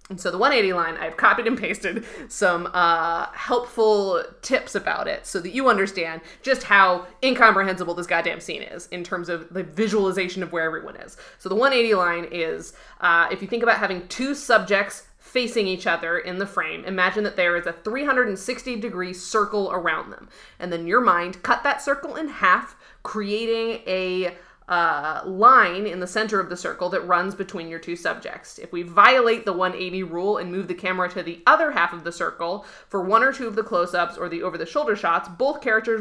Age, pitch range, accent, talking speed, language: 20-39, 180-225 Hz, American, 195 wpm, English